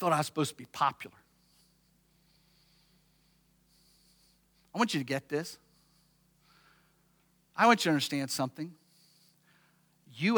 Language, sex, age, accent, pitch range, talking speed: English, male, 50-69, American, 135-175 Hz, 120 wpm